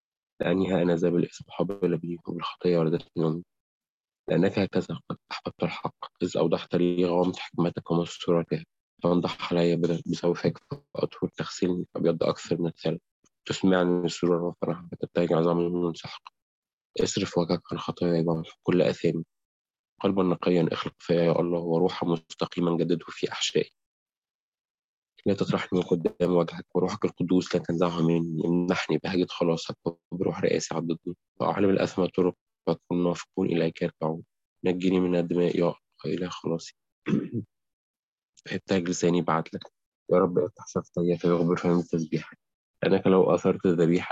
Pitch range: 85-90 Hz